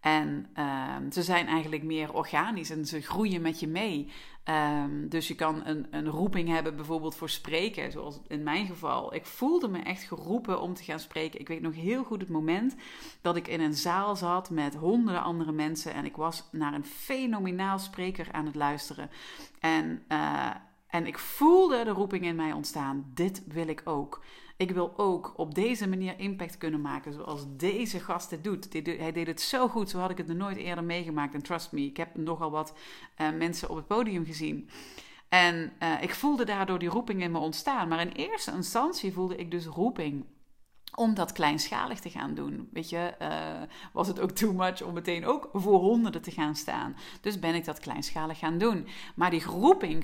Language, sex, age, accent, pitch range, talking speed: Dutch, female, 40-59, Dutch, 155-190 Hz, 200 wpm